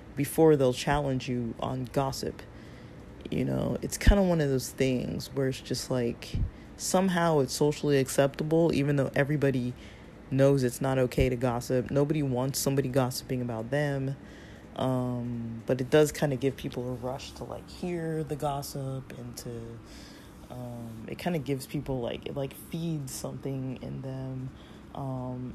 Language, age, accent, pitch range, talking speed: English, 20-39, American, 130-155 Hz, 160 wpm